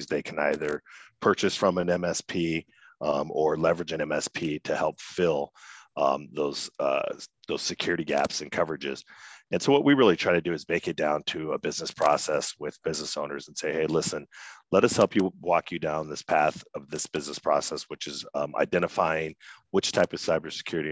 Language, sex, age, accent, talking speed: English, male, 40-59, American, 190 wpm